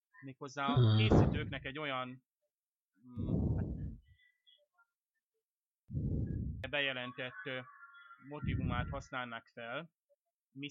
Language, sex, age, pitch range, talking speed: Hungarian, male, 30-49, 120-140 Hz, 55 wpm